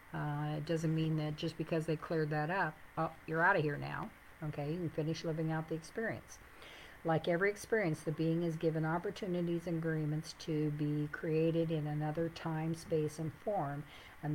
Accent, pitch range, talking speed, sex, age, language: American, 150-165 Hz, 185 wpm, female, 50-69, English